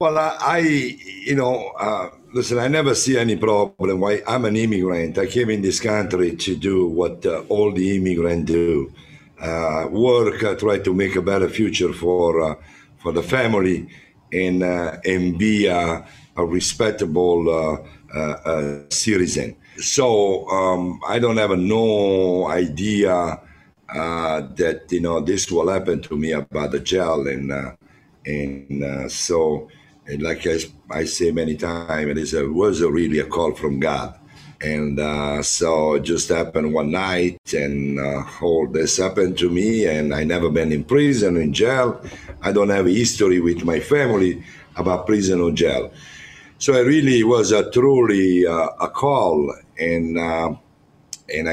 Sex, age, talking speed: male, 60-79, 165 wpm